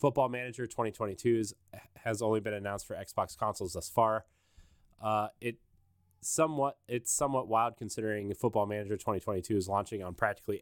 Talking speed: 145 wpm